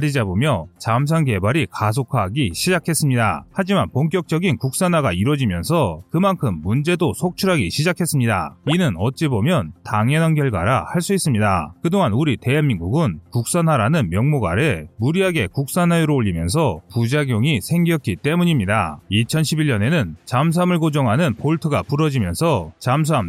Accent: native